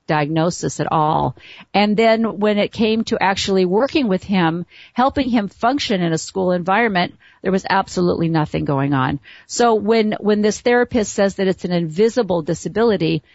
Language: English